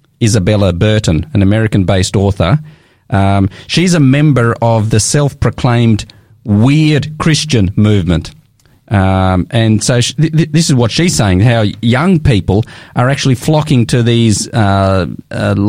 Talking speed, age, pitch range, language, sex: 135 wpm, 40-59, 110-140 Hz, English, male